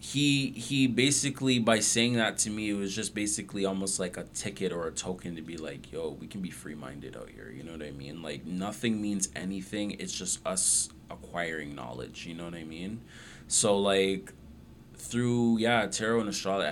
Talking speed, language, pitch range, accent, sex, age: 200 wpm, English, 80-100 Hz, American, male, 20-39